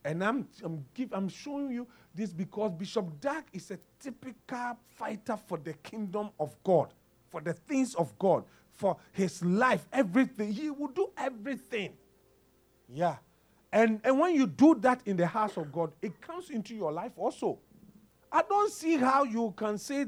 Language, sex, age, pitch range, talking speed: English, male, 40-59, 170-255 Hz, 175 wpm